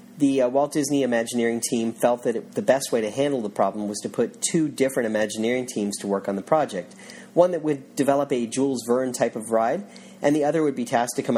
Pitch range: 120-175 Hz